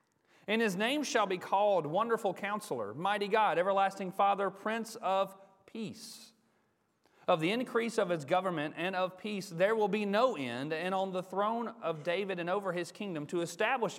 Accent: American